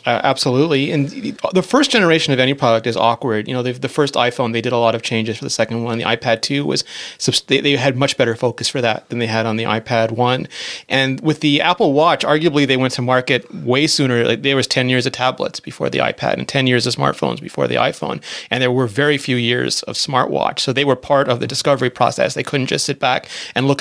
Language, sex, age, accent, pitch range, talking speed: English, male, 30-49, American, 120-135 Hz, 245 wpm